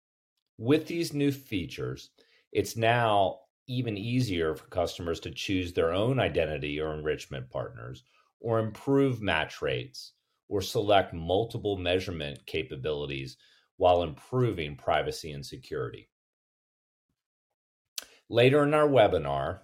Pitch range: 80-115 Hz